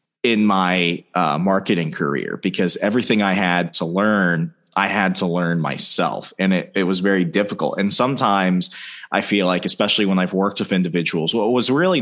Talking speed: 180 wpm